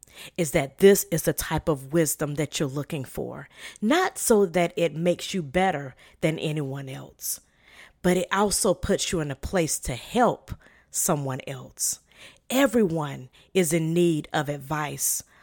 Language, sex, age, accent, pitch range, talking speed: English, female, 40-59, American, 145-190 Hz, 155 wpm